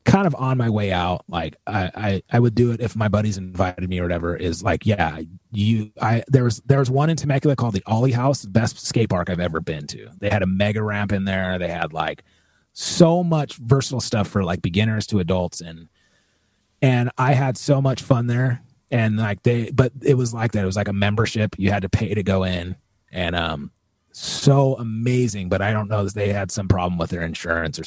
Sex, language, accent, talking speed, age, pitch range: male, English, American, 235 wpm, 30-49, 95-125 Hz